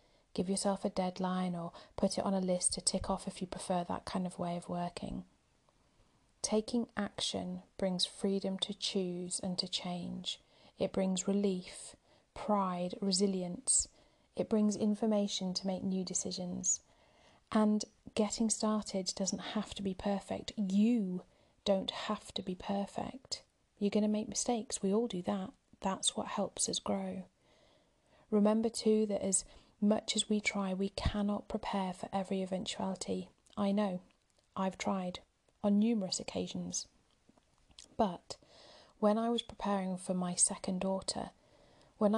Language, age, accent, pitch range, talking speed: English, 40-59, British, 185-210 Hz, 145 wpm